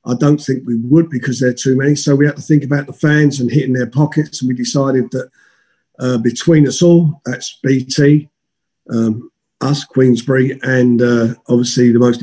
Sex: male